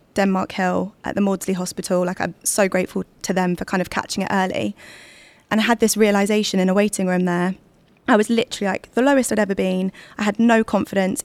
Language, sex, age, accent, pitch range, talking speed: English, female, 20-39, British, 185-210 Hz, 220 wpm